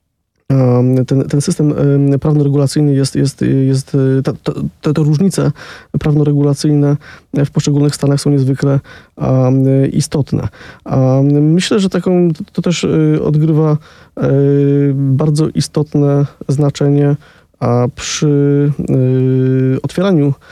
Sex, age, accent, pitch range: male, 20-39, native, 130-150 Hz